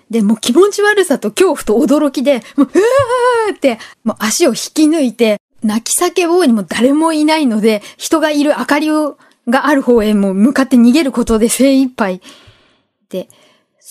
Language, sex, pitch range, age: Japanese, female, 205-280 Hz, 20-39